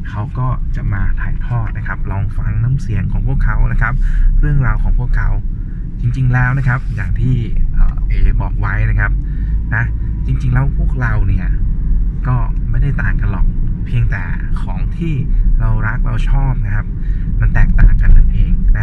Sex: male